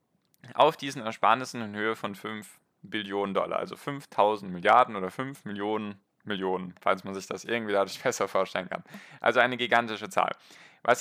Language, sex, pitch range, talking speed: German, male, 100-120 Hz, 165 wpm